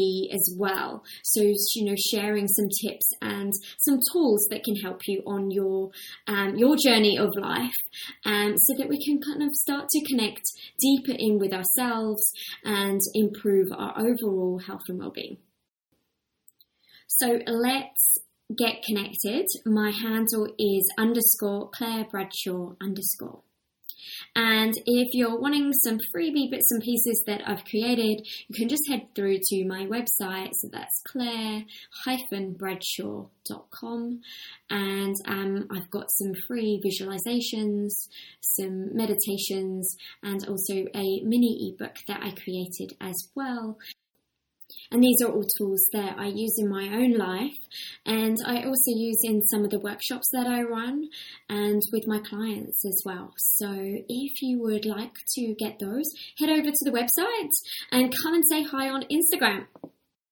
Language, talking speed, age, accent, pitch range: English, 145 wpm, 20-39, British, 200-250 Hz